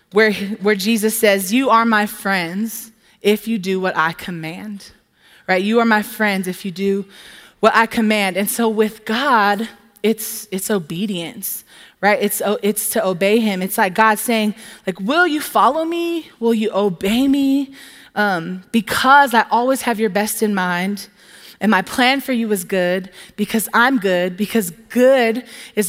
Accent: American